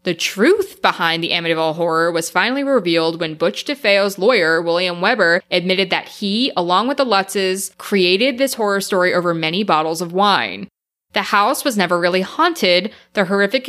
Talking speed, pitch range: 170 wpm, 170-220 Hz